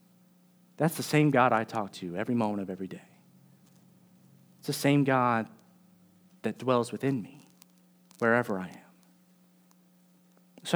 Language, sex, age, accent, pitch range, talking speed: English, male, 30-49, American, 120-180 Hz, 135 wpm